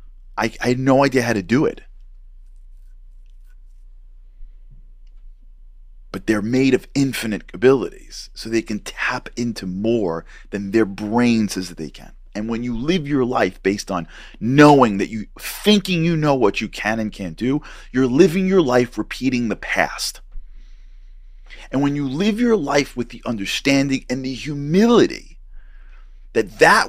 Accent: American